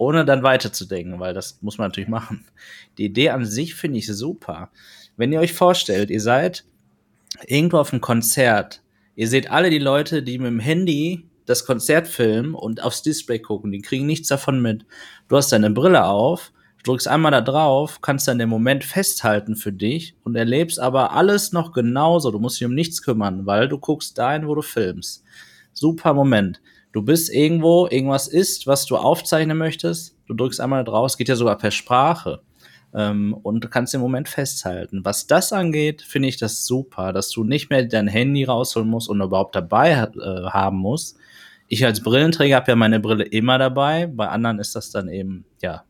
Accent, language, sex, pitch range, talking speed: German, German, male, 110-145 Hz, 190 wpm